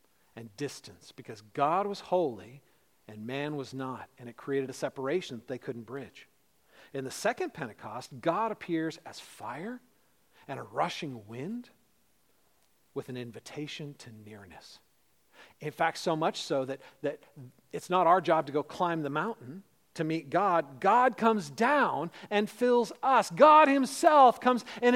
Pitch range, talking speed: 130-180 Hz, 155 wpm